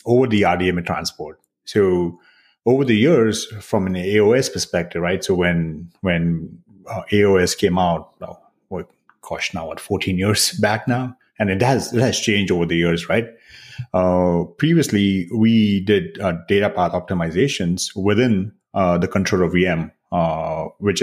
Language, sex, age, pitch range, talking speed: English, male, 30-49, 85-105 Hz, 155 wpm